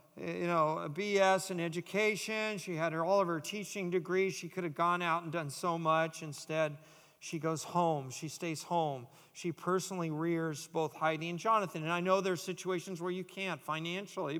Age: 50-69